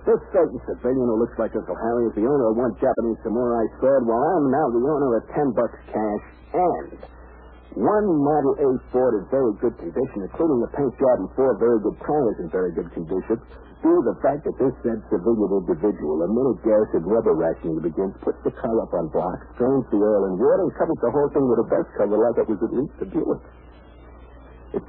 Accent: American